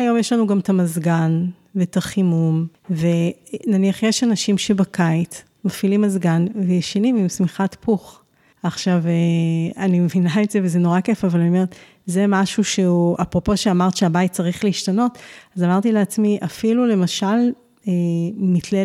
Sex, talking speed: female, 140 wpm